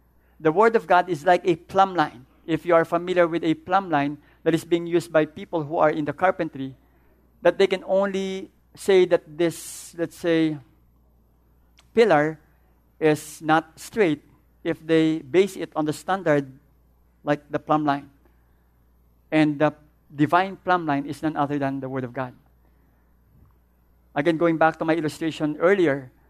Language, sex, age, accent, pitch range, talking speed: English, male, 50-69, Filipino, 130-165 Hz, 165 wpm